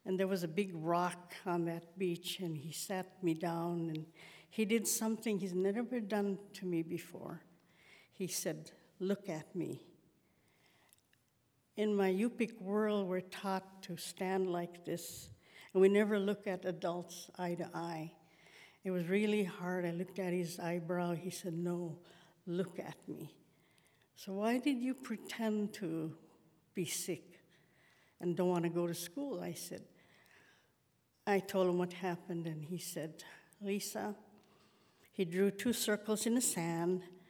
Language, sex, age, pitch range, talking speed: English, female, 60-79, 170-195 Hz, 155 wpm